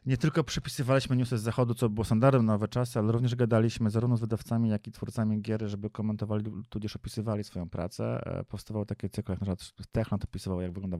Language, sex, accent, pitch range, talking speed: Polish, male, native, 100-120 Hz, 205 wpm